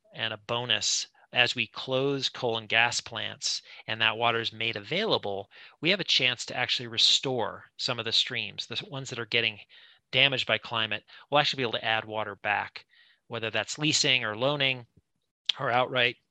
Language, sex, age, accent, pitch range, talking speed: English, male, 30-49, American, 115-135 Hz, 185 wpm